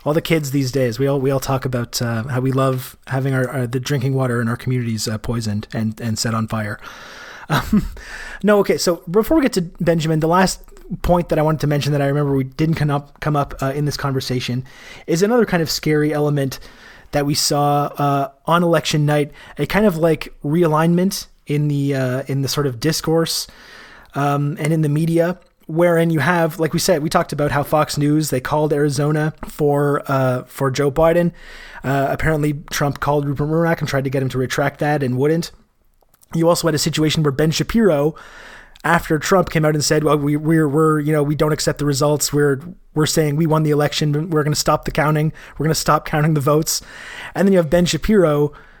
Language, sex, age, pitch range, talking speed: English, male, 30-49, 140-160 Hz, 220 wpm